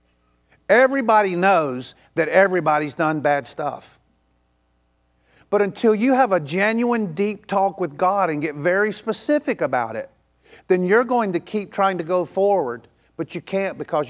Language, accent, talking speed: English, American, 155 wpm